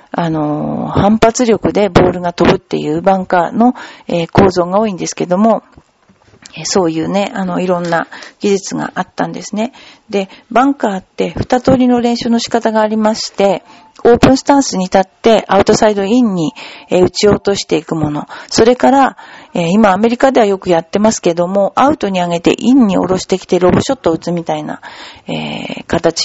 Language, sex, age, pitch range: Japanese, female, 50-69, 175-245 Hz